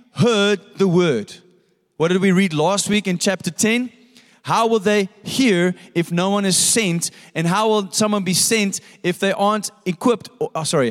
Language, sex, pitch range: English, male, 185-225 Hz